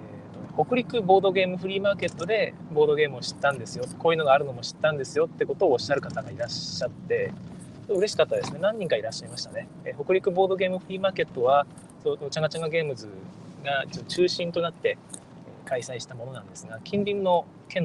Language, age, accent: Japanese, 20-39, native